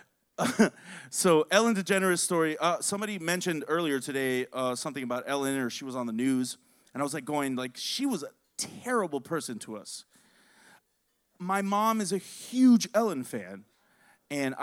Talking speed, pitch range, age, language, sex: 165 wpm, 130-185 Hz, 30-49, English, male